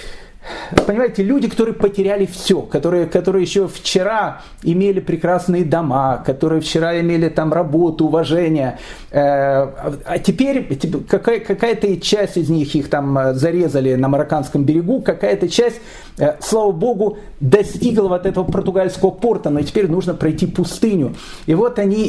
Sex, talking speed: male, 130 wpm